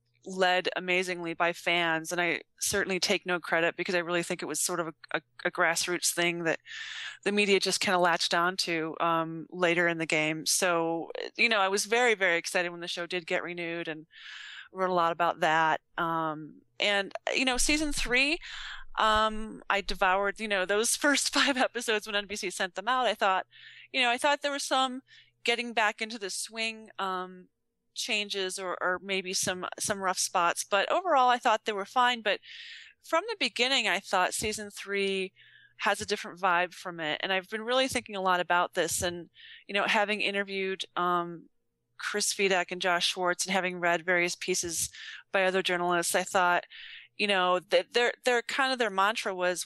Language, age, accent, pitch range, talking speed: English, 20-39, American, 175-225 Hz, 195 wpm